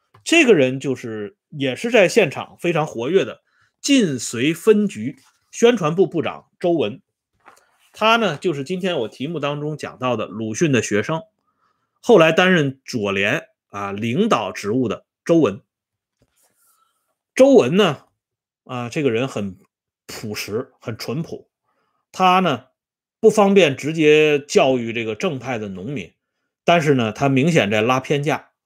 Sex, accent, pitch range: male, Chinese, 120-185 Hz